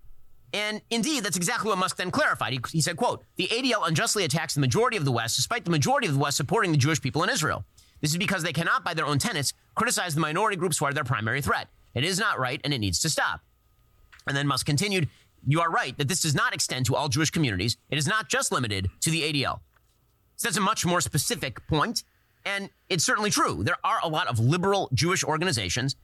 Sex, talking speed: male, 235 wpm